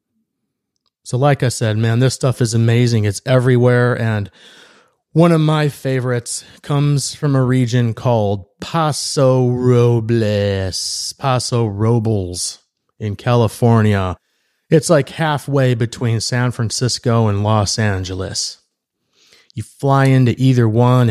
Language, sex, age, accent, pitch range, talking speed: English, male, 30-49, American, 110-130 Hz, 115 wpm